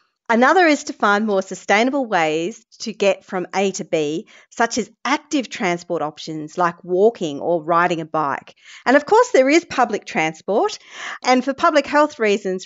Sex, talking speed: female, 170 wpm